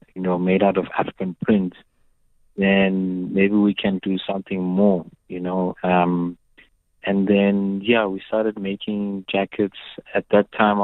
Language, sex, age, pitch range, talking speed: English, male, 30-49, 90-100 Hz, 150 wpm